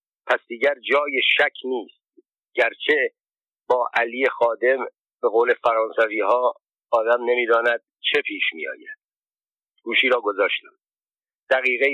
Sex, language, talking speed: male, Persian, 120 wpm